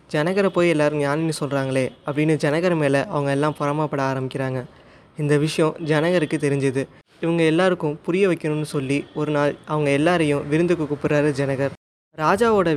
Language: Tamil